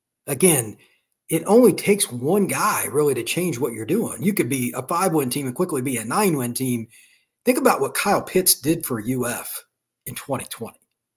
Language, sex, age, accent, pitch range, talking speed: English, male, 40-59, American, 125-170 Hz, 185 wpm